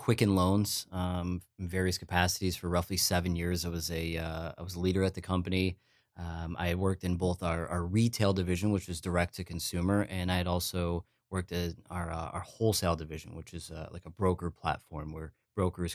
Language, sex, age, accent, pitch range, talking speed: English, male, 30-49, American, 85-95 Hz, 210 wpm